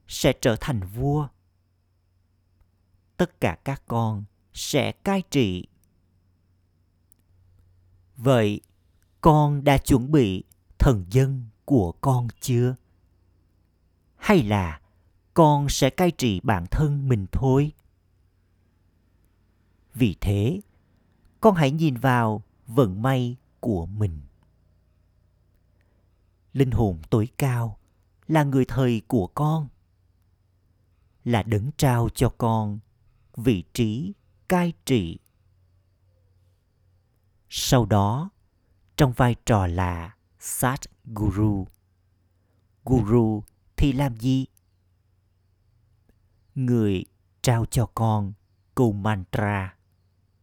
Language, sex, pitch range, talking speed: Vietnamese, male, 90-125 Hz, 90 wpm